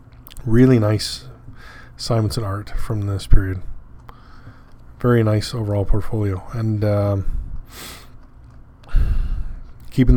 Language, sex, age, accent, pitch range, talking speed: English, male, 20-39, American, 105-125 Hz, 85 wpm